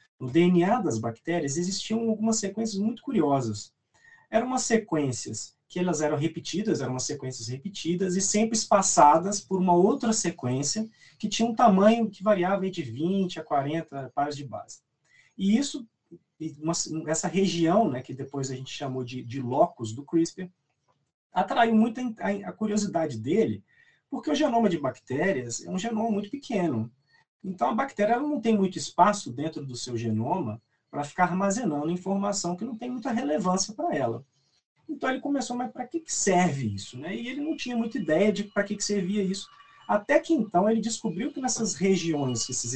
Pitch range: 145-225 Hz